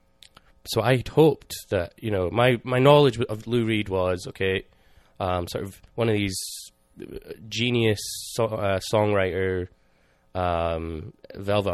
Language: English